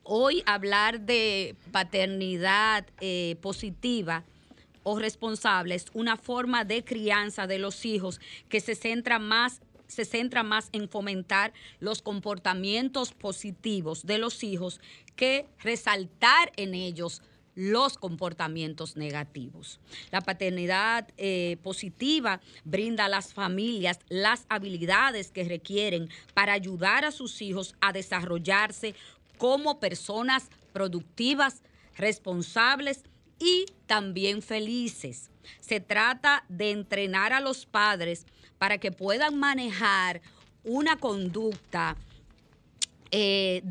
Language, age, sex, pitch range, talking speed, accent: Spanish, 30-49, female, 185-235 Hz, 105 wpm, American